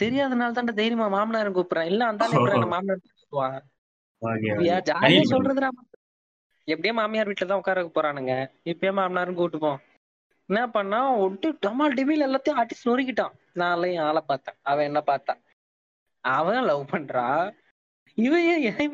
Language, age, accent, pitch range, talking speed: Tamil, 20-39, native, 150-210 Hz, 110 wpm